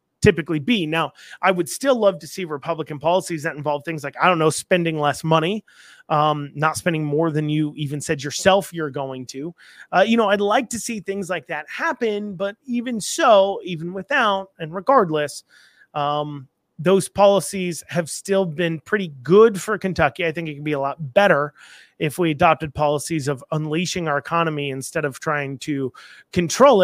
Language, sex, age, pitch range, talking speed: English, male, 30-49, 150-190 Hz, 185 wpm